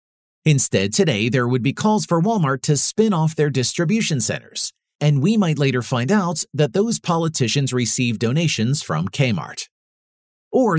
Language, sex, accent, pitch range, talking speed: English, male, American, 125-170 Hz, 155 wpm